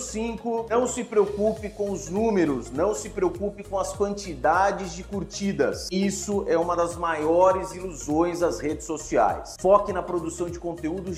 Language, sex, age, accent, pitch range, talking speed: Portuguese, male, 30-49, Brazilian, 170-210 Hz, 155 wpm